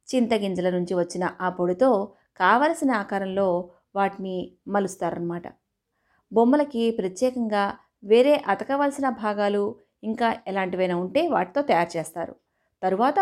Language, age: Telugu, 30-49